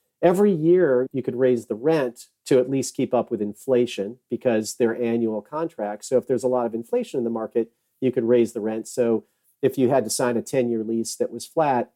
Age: 40-59